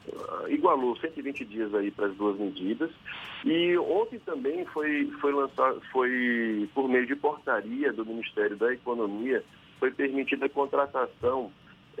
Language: Portuguese